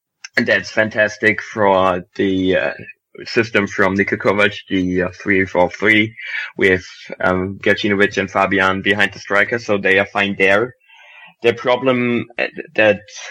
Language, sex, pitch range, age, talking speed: English, male, 95-105 Hz, 20-39, 135 wpm